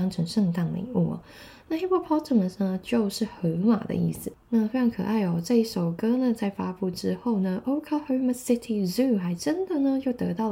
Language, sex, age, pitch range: Chinese, female, 20-39, 185-250 Hz